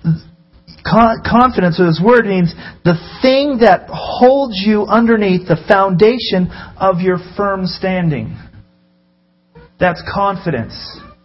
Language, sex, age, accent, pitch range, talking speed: English, male, 40-59, American, 155-210 Hz, 105 wpm